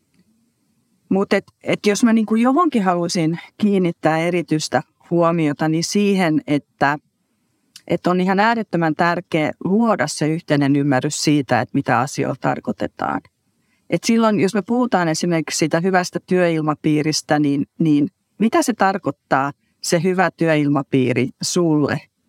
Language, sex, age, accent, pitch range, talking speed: Finnish, female, 40-59, native, 150-195 Hz, 125 wpm